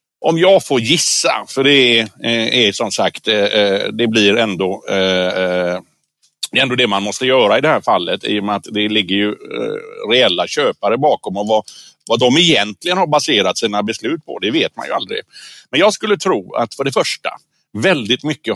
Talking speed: 185 wpm